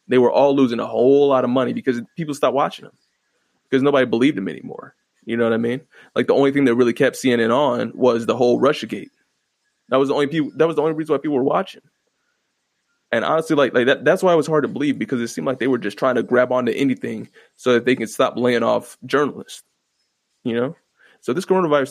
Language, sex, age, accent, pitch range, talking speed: English, male, 20-39, American, 120-145 Hz, 240 wpm